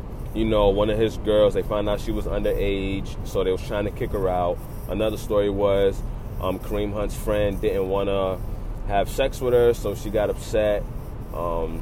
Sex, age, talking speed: male, 20-39, 200 wpm